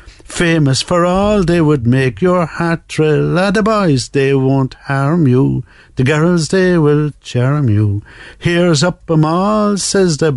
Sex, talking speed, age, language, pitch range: male, 170 wpm, 60-79, English, 125-175 Hz